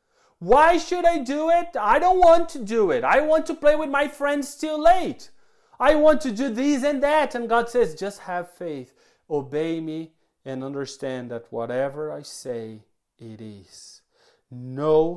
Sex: male